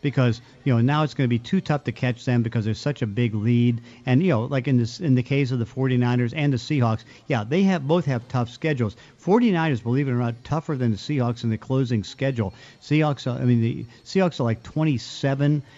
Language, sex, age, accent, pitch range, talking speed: English, male, 50-69, American, 120-150 Hz, 240 wpm